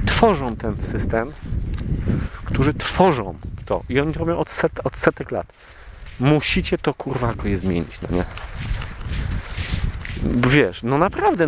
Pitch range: 110-170 Hz